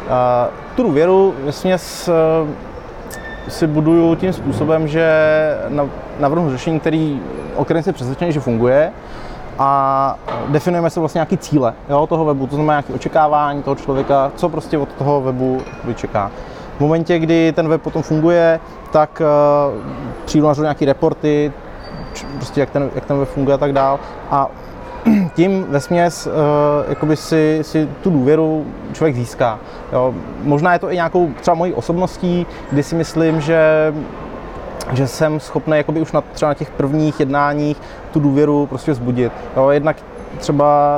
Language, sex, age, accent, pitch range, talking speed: Czech, male, 20-39, native, 140-160 Hz, 150 wpm